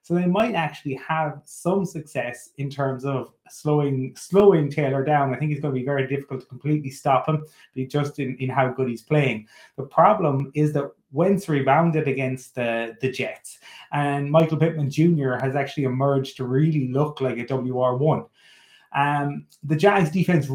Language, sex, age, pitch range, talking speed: English, male, 20-39, 130-155 Hz, 175 wpm